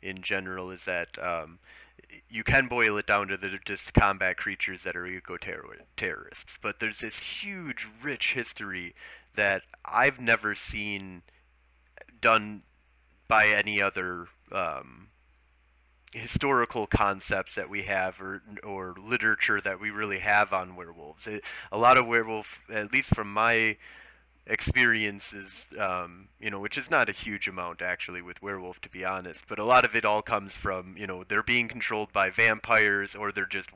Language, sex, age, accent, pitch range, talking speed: English, male, 30-49, American, 90-105 Hz, 160 wpm